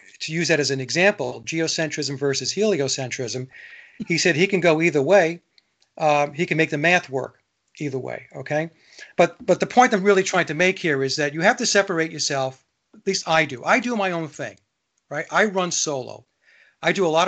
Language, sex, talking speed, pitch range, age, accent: English, male, 210 wpm, 145-170 Hz, 40-59, American